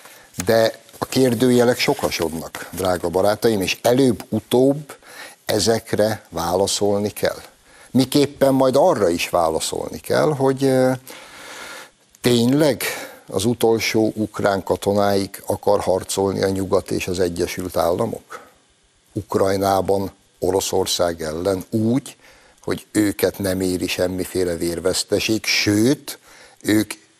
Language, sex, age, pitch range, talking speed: Hungarian, male, 60-79, 95-125 Hz, 95 wpm